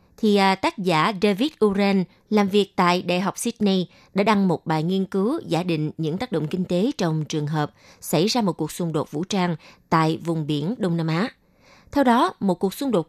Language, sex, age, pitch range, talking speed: Vietnamese, female, 20-39, 165-220 Hz, 215 wpm